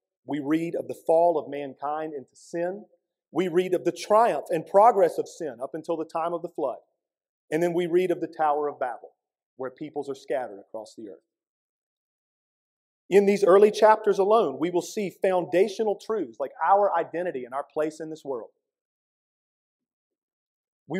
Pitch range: 130-195 Hz